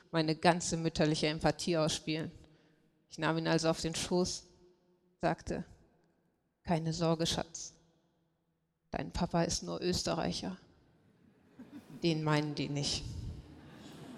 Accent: German